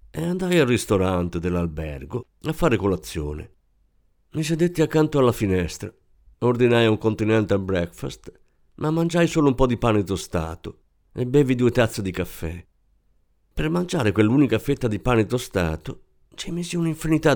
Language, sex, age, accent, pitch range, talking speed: Italian, male, 50-69, native, 90-145 Hz, 145 wpm